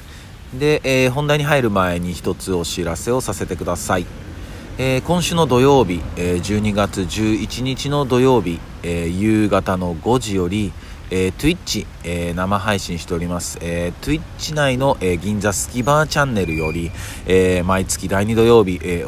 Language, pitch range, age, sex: Japanese, 85-115 Hz, 40-59, male